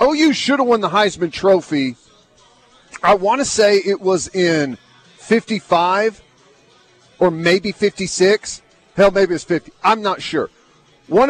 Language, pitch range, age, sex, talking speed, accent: English, 160-205 Hz, 40-59, male, 140 wpm, American